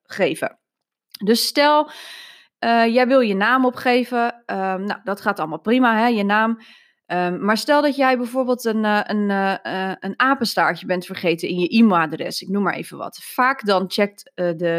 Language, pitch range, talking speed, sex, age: Dutch, 190-250 Hz, 185 wpm, female, 20-39